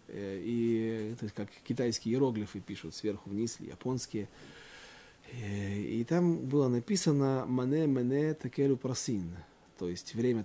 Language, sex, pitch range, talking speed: Russian, male, 105-155 Hz, 120 wpm